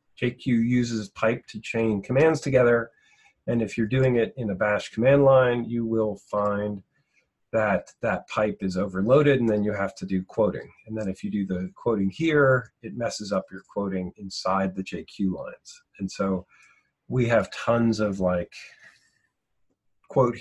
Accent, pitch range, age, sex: American, 95-125 Hz, 40-59, male